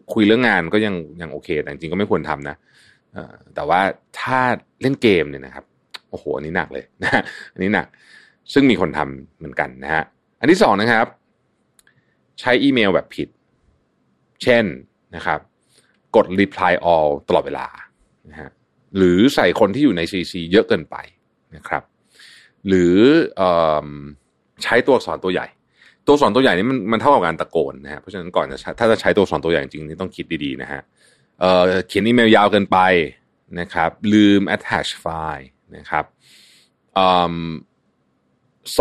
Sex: male